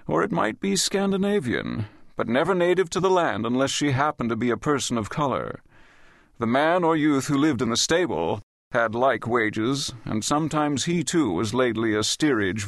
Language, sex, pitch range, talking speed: English, male, 120-165 Hz, 190 wpm